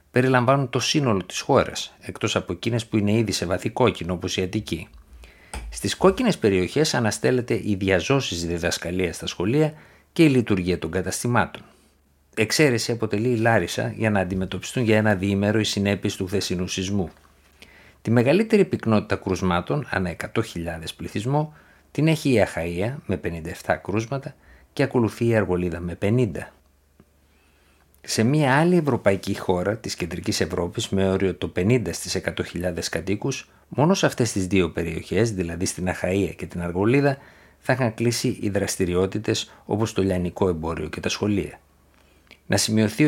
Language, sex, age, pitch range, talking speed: Greek, male, 60-79, 90-115 Hz, 150 wpm